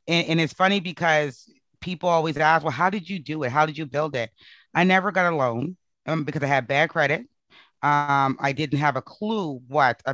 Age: 30-49